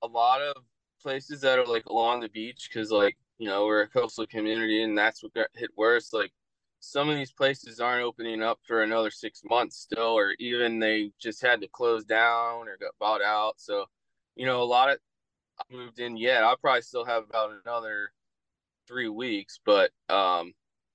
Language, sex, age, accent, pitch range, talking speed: English, male, 20-39, American, 110-140 Hz, 200 wpm